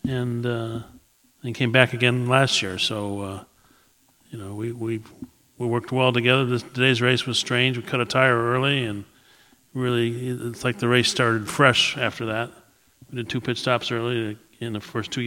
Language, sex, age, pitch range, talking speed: English, male, 40-59, 110-120 Hz, 190 wpm